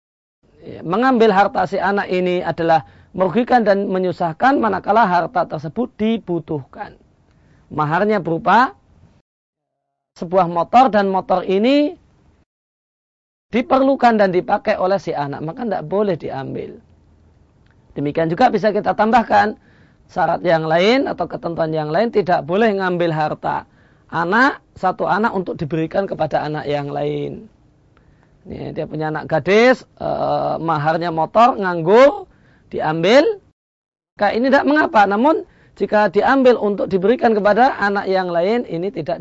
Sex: male